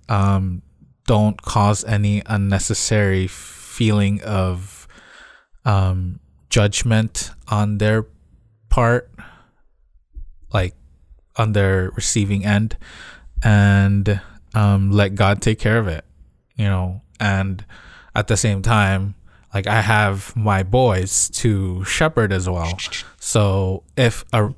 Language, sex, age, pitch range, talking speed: English, male, 20-39, 95-115 Hz, 105 wpm